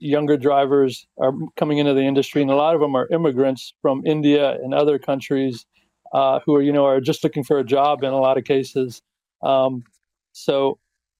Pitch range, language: 135-145 Hz, English